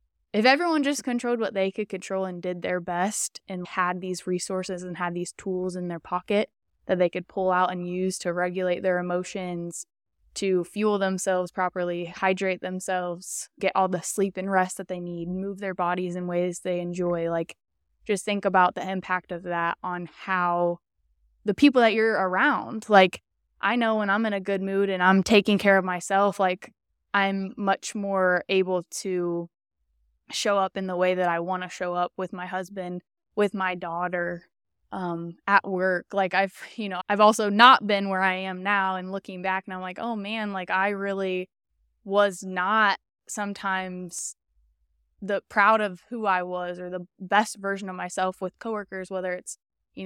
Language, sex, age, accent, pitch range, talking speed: English, female, 10-29, American, 180-200 Hz, 185 wpm